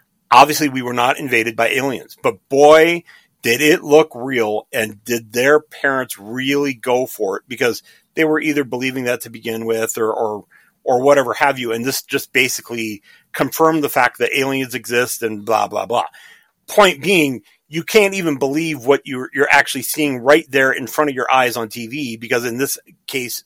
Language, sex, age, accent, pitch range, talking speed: English, male, 40-59, American, 120-150 Hz, 190 wpm